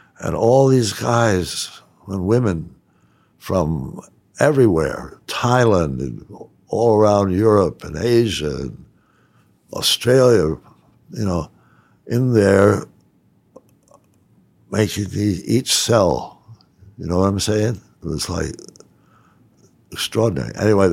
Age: 60-79